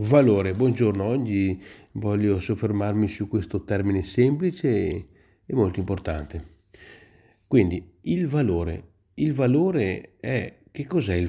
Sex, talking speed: male, 110 wpm